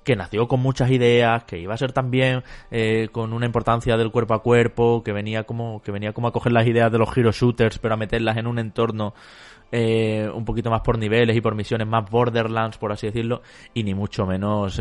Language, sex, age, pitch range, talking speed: Spanish, male, 20-39, 110-125 Hz, 225 wpm